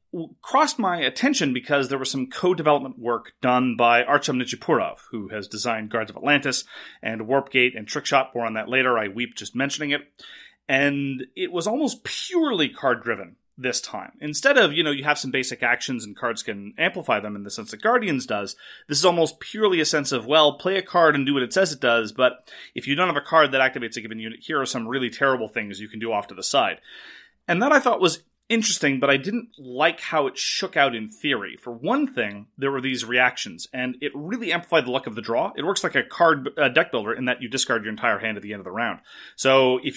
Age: 30-49